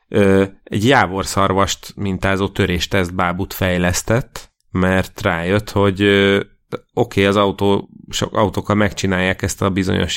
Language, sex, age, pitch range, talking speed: Hungarian, male, 30-49, 95-105 Hz, 110 wpm